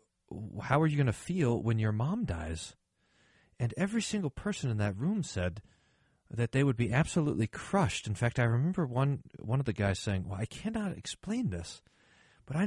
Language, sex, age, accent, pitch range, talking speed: English, male, 40-59, American, 100-135 Hz, 195 wpm